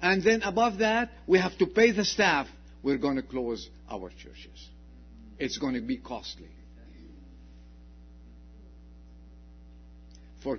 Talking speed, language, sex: 125 wpm, English, male